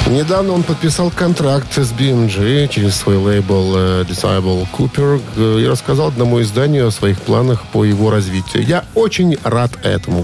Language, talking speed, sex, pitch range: Russian, 150 wpm, male, 100-135 Hz